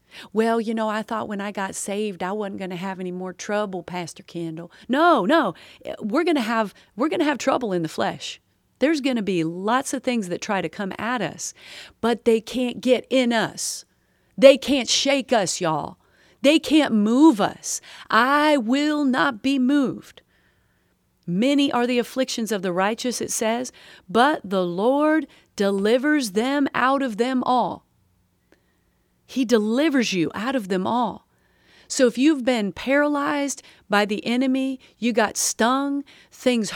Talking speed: 170 wpm